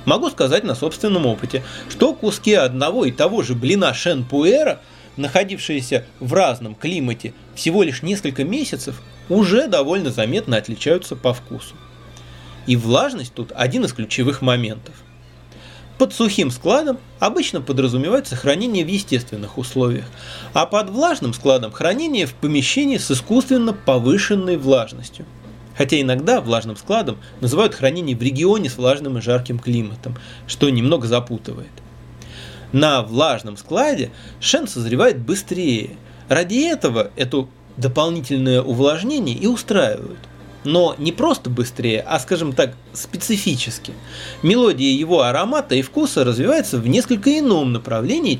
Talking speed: 125 wpm